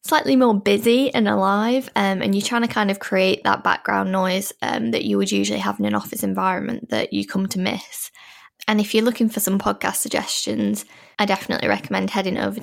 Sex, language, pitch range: female, English, 175-235 Hz